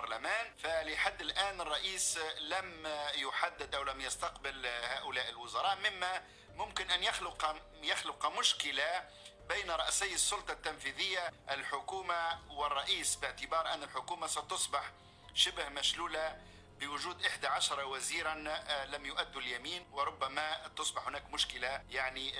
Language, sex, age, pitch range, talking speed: Arabic, male, 50-69, 155-195 Hz, 105 wpm